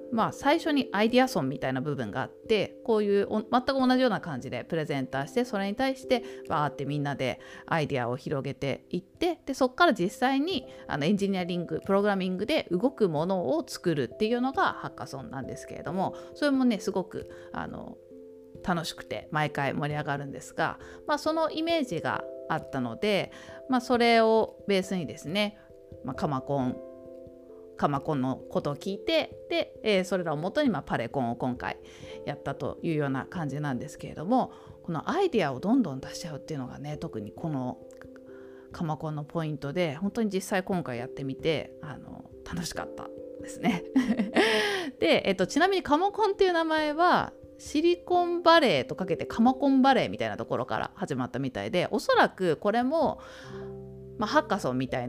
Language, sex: Japanese, female